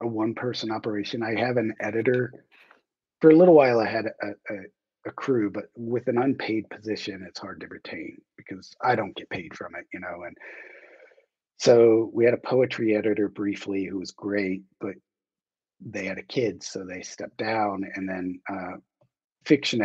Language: English